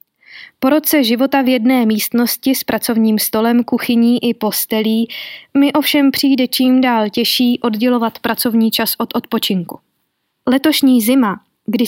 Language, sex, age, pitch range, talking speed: Czech, female, 20-39, 215-250 Hz, 130 wpm